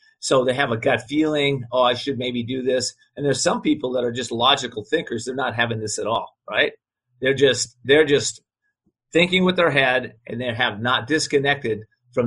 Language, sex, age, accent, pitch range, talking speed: English, male, 40-59, American, 120-155 Hz, 205 wpm